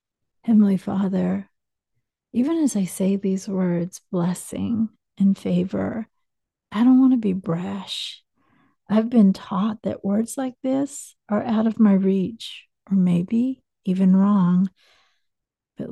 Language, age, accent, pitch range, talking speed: English, 50-69, American, 190-225 Hz, 130 wpm